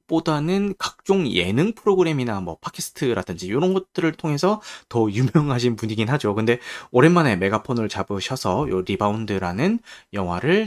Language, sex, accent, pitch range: Korean, male, native, 110-165 Hz